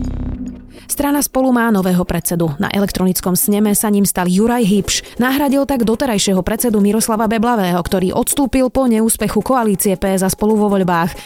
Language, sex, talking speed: Slovak, female, 155 wpm